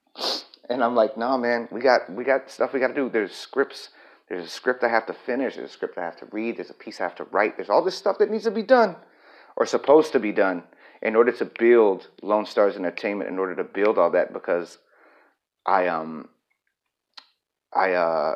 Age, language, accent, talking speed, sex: 30-49, English, American, 230 wpm, male